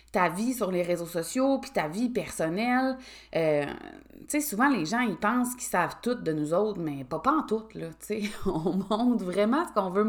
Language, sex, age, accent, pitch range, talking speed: French, female, 30-49, Canadian, 175-235 Hz, 220 wpm